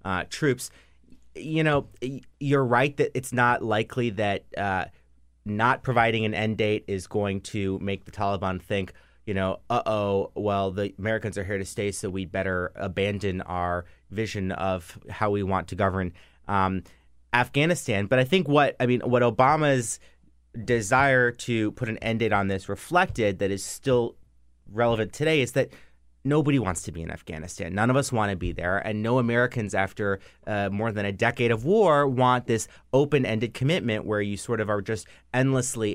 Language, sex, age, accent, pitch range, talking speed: English, male, 30-49, American, 95-120 Hz, 180 wpm